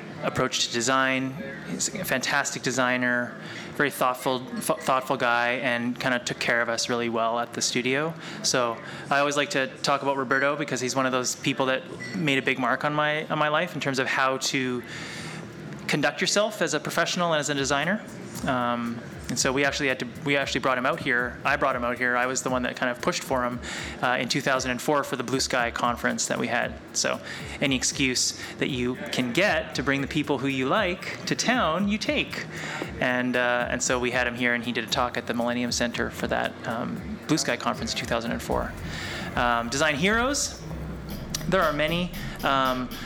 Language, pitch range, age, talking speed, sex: English, 125-150 Hz, 20-39, 210 wpm, male